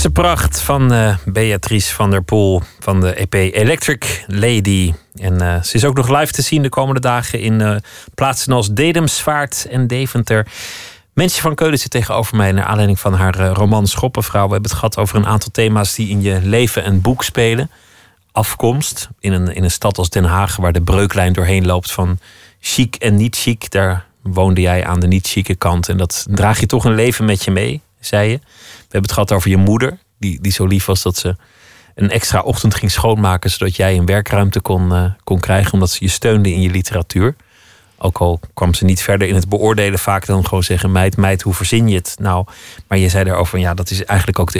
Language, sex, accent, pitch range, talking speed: Dutch, male, Dutch, 95-115 Hz, 220 wpm